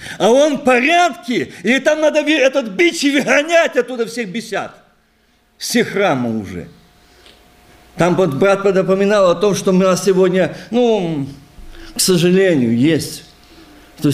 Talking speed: 135 wpm